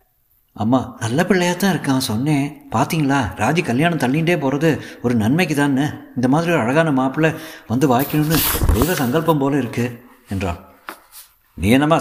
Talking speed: 125 wpm